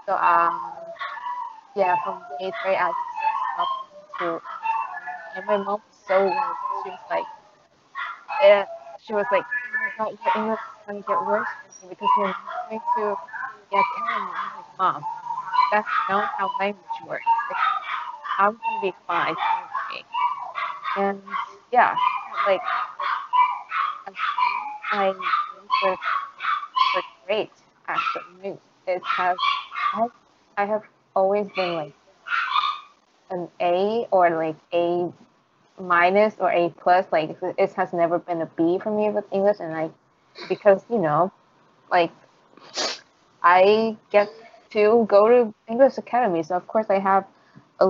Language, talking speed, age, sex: Vietnamese, 140 wpm, 20-39, female